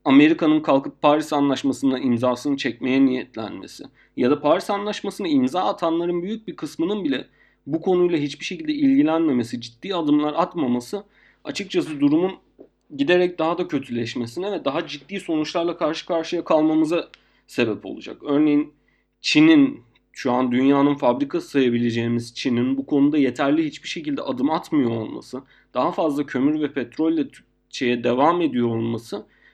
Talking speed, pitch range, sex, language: 130 wpm, 140-225 Hz, male, Turkish